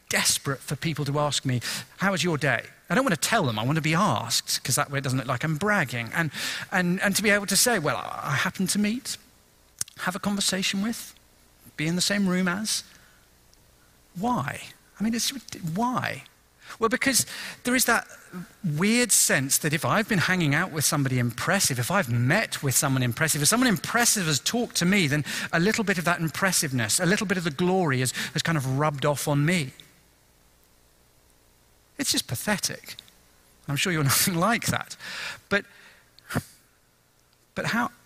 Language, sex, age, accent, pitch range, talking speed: English, male, 40-59, British, 140-205 Hz, 190 wpm